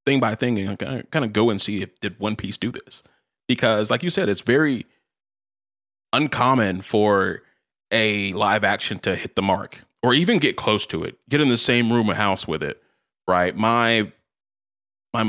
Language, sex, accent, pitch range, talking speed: English, male, American, 100-120 Hz, 190 wpm